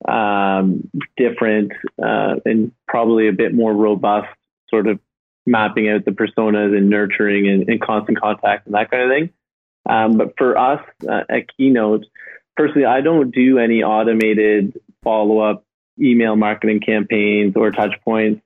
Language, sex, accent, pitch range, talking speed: English, male, American, 105-120 Hz, 150 wpm